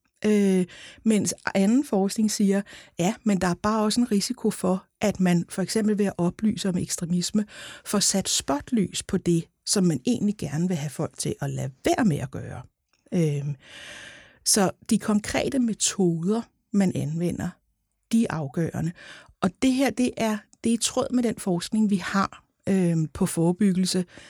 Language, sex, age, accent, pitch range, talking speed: Danish, female, 60-79, native, 170-215 Hz, 170 wpm